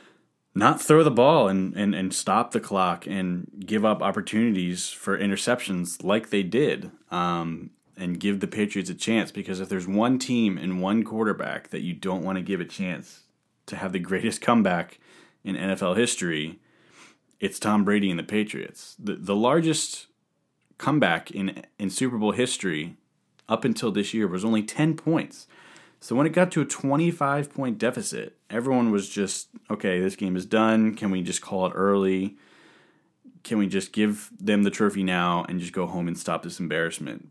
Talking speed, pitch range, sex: 180 wpm, 95-115 Hz, male